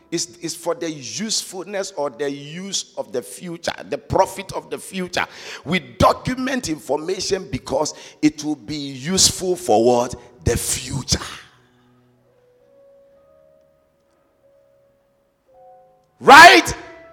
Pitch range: 120-205 Hz